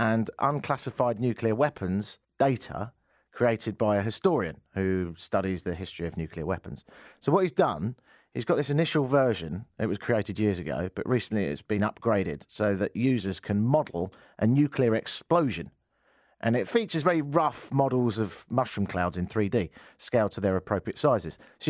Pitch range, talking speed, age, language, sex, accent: 100-140 Hz, 165 wpm, 40-59, English, male, British